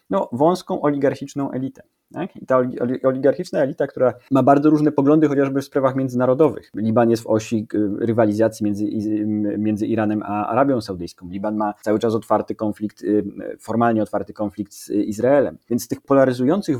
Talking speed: 145 wpm